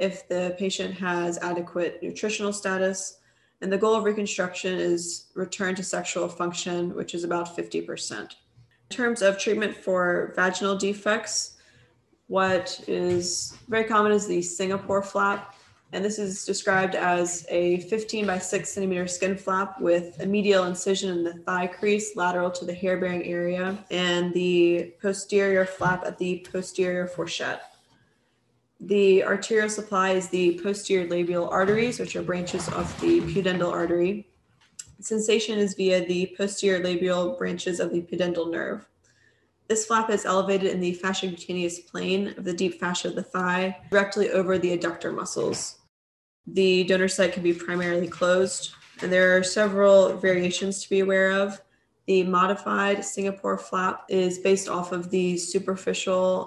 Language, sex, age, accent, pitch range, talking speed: English, female, 20-39, American, 180-195 Hz, 150 wpm